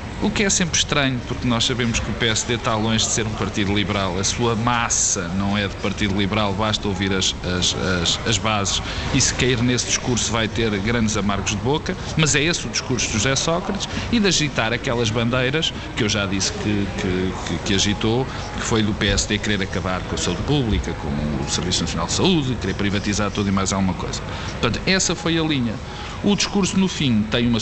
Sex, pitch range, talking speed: male, 100-125 Hz, 215 wpm